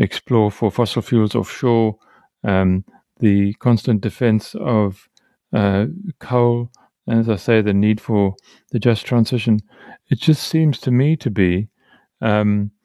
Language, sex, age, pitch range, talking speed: English, male, 40-59, 110-140 Hz, 140 wpm